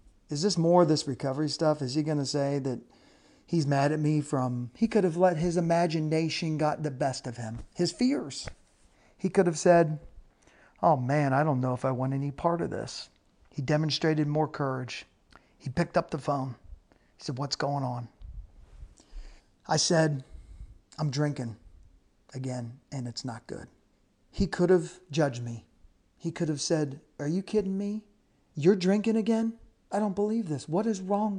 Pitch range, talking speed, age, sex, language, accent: 130-170 Hz, 180 wpm, 40-59, male, English, American